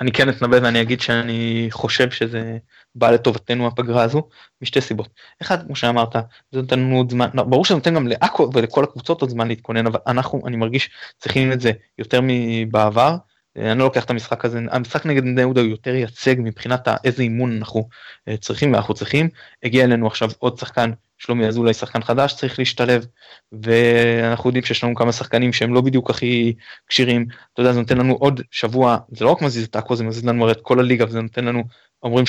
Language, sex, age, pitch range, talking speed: Hebrew, male, 20-39, 115-130 Hz, 200 wpm